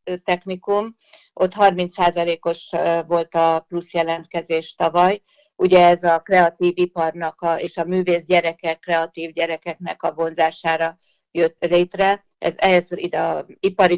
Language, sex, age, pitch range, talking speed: Hungarian, female, 60-79, 170-190 Hz, 115 wpm